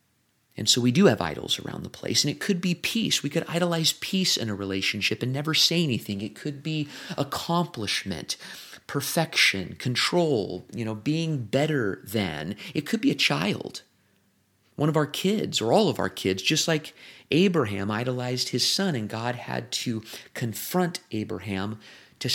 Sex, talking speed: male, 170 wpm